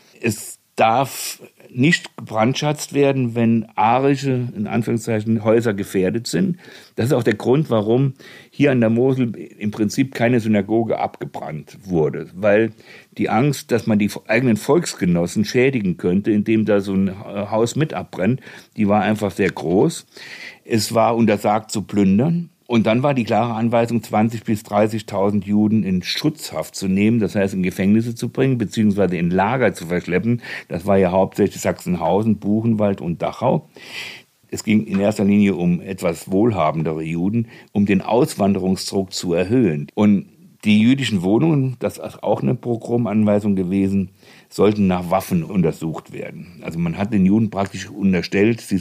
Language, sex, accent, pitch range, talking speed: German, male, German, 100-120 Hz, 155 wpm